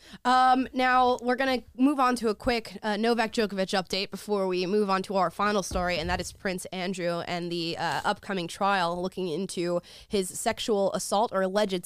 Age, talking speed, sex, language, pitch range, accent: 20-39, 195 wpm, female, English, 185-230 Hz, American